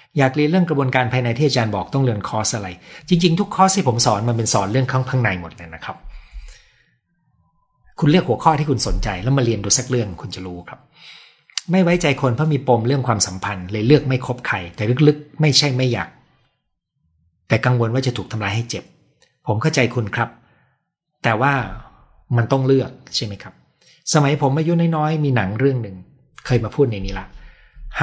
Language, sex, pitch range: Thai, male, 105-145 Hz